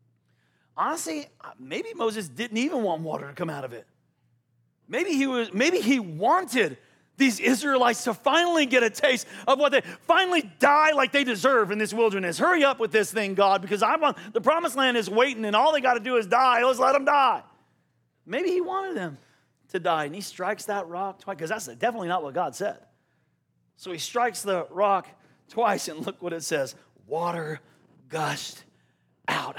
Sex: male